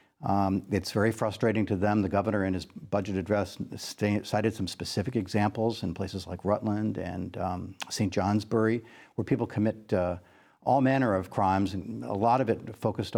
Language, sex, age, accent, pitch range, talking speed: English, male, 60-79, American, 95-120 Hz, 175 wpm